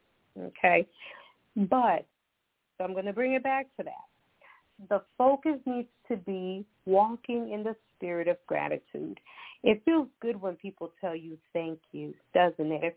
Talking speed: 155 wpm